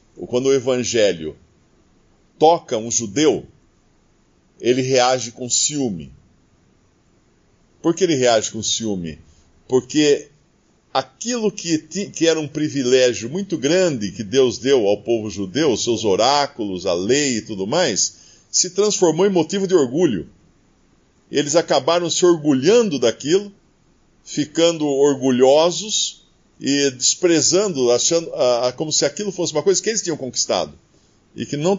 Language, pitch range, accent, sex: Portuguese, 125-180 Hz, Brazilian, male